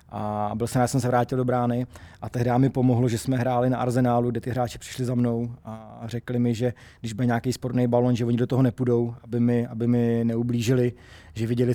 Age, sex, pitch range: 20-39, male, 115-125 Hz